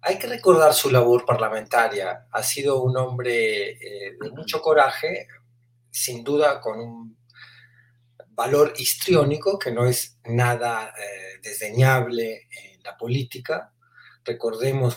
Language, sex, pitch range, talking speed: Spanish, male, 120-165 Hz, 120 wpm